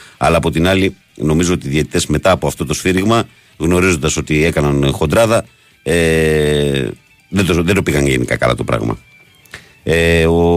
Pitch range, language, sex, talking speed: 75-100 Hz, Greek, male, 165 wpm